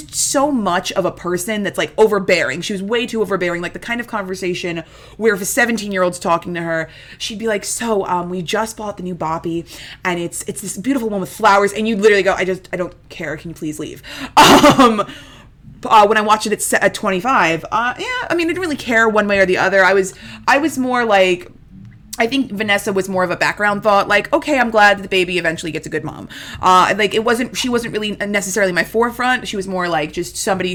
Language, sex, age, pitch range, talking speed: English, female, 20-39, 165-215 Hz, 240 wpm